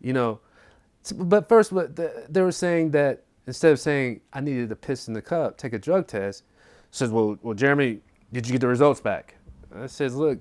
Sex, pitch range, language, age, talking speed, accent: male, 105-145 Hz, English, 30-49, 200 wpm, American